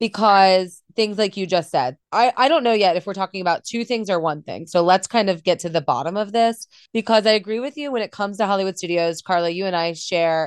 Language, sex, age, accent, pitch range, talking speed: English, female, 20-39, American, 160-205 Hz, 265 wpm